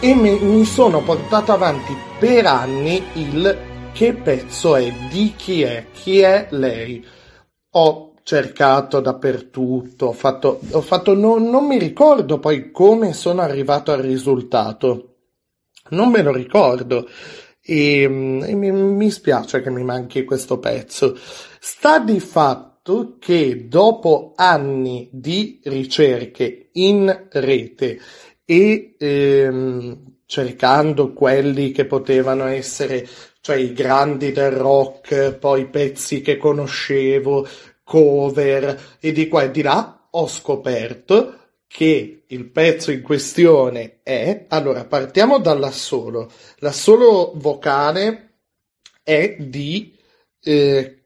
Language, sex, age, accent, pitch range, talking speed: Italian, male, 40-59, native, 135-195 Hz, 115 wpm